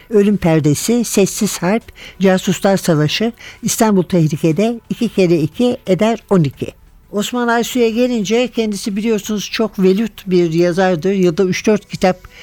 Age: 60-79